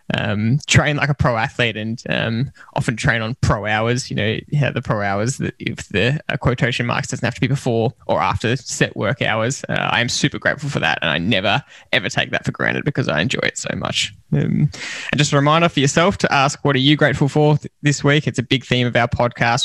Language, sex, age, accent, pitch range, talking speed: English, male, 10-29, Australian, 120-150 Hz, 245 wpm